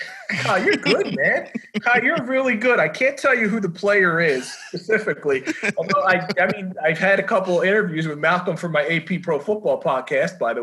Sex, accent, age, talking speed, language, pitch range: male, American, 30-49, 210 wpm, English, 150-200 Hz